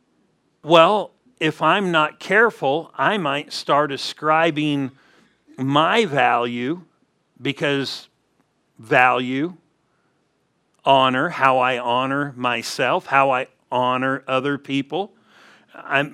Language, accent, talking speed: English, American, 90 wpm